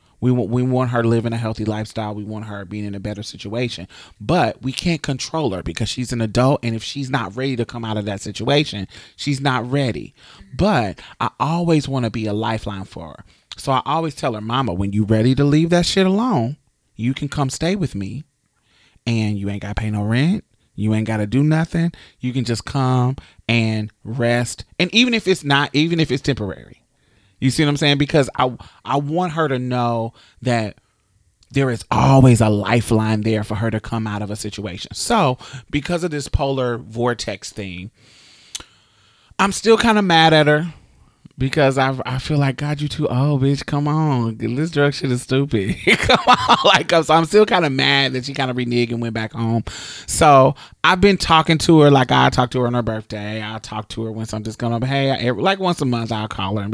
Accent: American